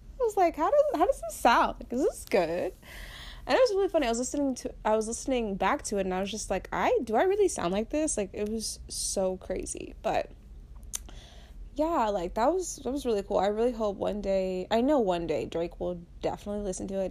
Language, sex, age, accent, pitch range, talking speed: English, female, 20-39, American, 185-230 Hz, 235 wpm